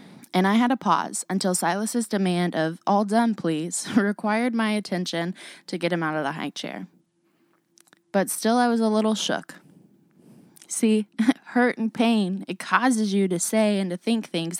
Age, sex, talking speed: 20-39, female, 175 wpm